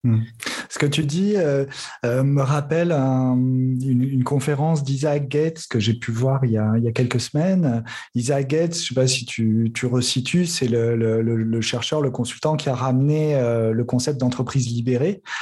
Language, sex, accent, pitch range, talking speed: French, male, French, 120-155 Hz, 205 wpm